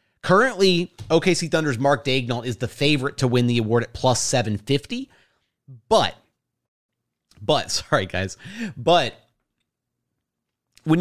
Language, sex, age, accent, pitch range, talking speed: English, male, 30-49, American, 125-165 Hz, 115 wpm